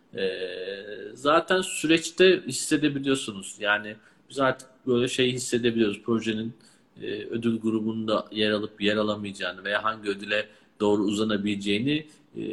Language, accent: Turkish, native